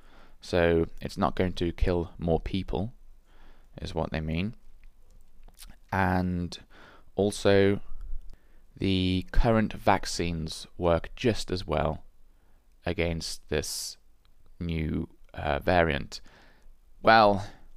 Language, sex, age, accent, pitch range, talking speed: English, male, 20-39, British, 80-95 Hz, 90 wpm